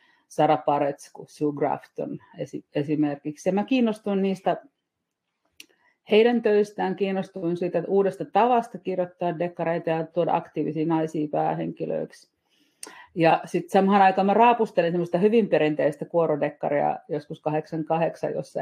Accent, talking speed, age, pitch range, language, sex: native, 105 wpm, 40-59, 150-190 Hz, Finnish, female